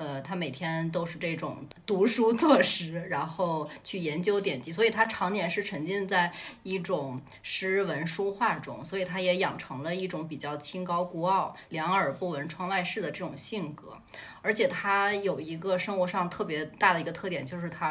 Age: 20-39